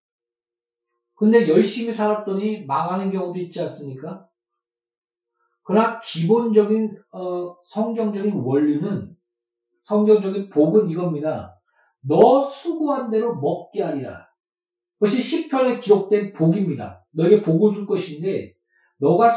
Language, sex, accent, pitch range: Korean, male, native, 190-255 Hz